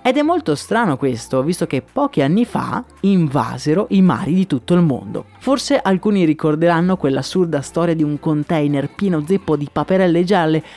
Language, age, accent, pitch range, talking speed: Italian, 30-49, native, 140-180 Hz, 165 wpm